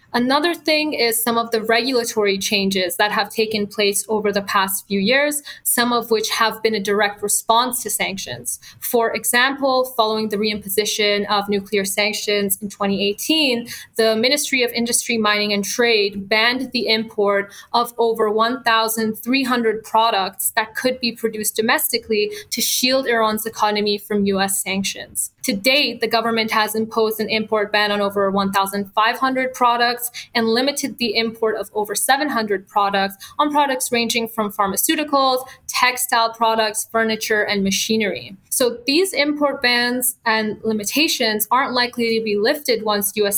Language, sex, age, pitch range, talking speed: English, female, 20-39, 205-240 Hz, 150 wpm